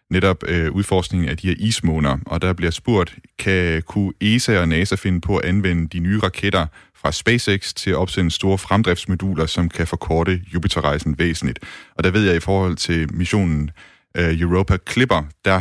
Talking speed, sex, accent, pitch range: 180 wpm, male, native, 80-95 Hz